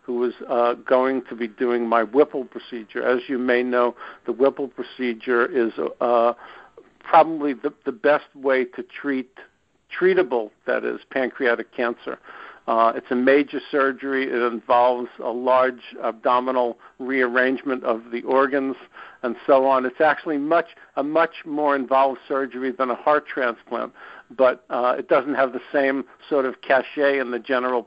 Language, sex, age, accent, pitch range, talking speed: English, male, 60-79, American, 120-140 Hz, 155 wpm